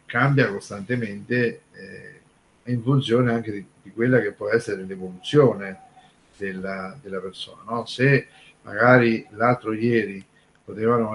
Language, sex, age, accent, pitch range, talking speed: Italian, male, 50-69, native, 105-130 Hz, 115 wpm